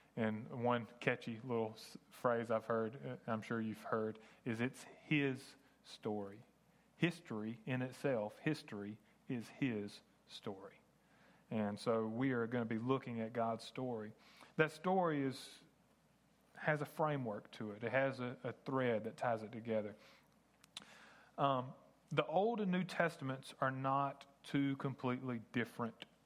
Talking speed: 140 wpm